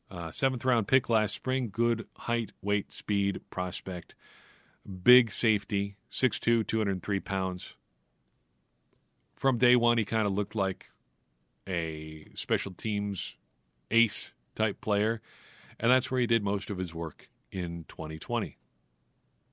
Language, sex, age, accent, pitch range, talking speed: English, male, 40-59, American, 90-110 Hz, 120 wpm